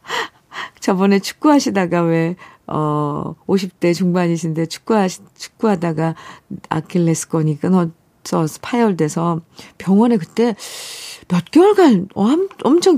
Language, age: Korean, 50-69